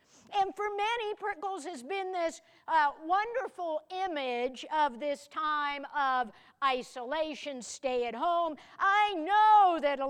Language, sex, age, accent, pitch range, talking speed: English, female, 50-69, American, 265-350 Hz, 120 wpm